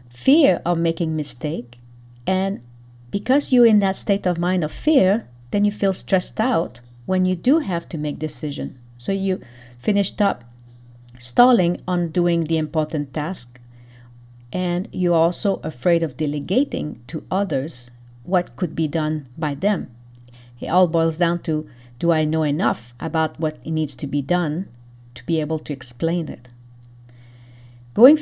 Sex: female